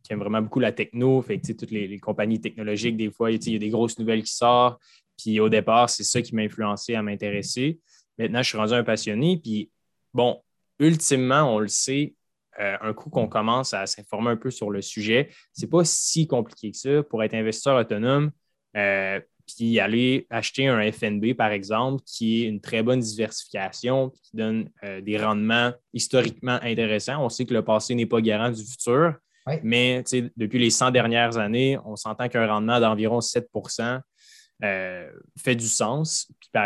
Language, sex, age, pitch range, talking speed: French, male, 20-39, 105-125 Hz, 195 wpm